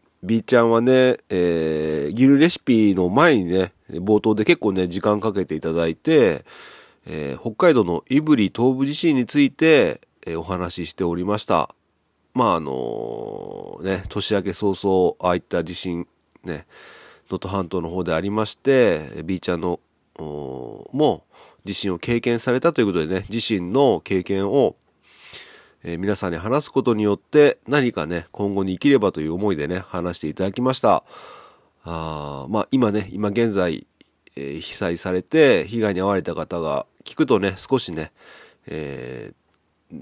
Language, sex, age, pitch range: Japanese, male, 40-59, 90-115 Hz